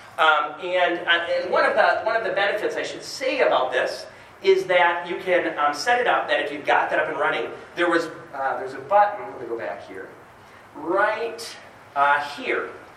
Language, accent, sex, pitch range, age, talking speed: English, American, male, 145-225 Hz, 30-49, 215 wpm